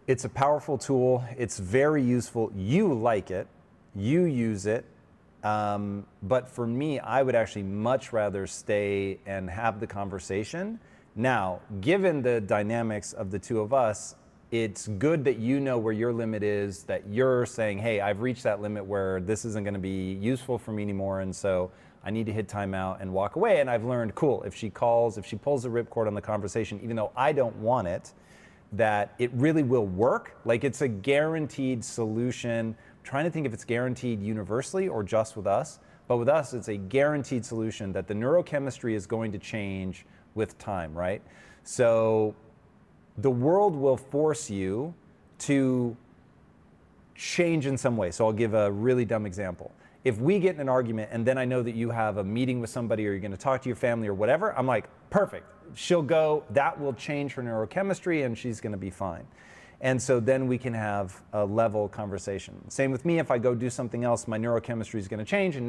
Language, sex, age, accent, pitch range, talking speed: English, male, 30-49, American, 105-130 Hz, 200 wpm